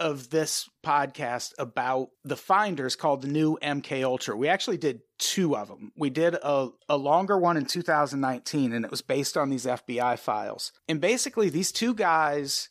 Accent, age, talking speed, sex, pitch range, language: American, 30-49, 180 wpm, male, 135-160 Hz, English